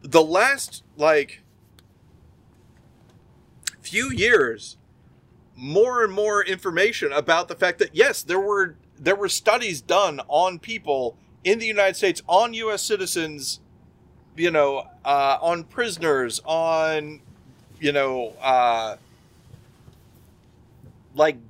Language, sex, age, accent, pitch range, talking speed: English, male, 30-49, American, 130-210 Hz, 110 wpm